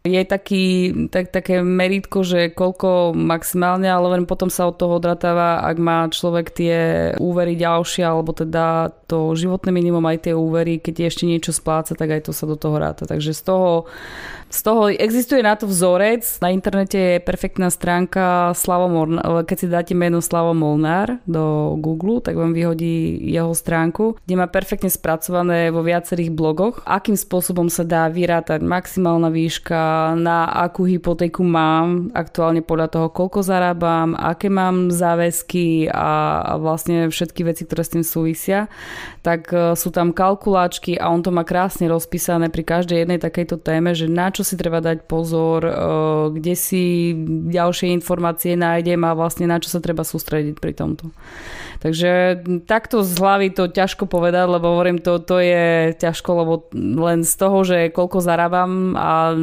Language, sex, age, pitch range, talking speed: Slovak, female, 20-39, 165-180 Hz, 160 wpm